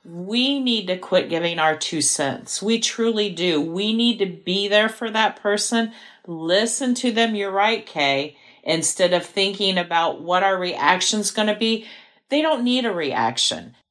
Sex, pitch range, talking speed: female, 160-225 Hz, 175 wpm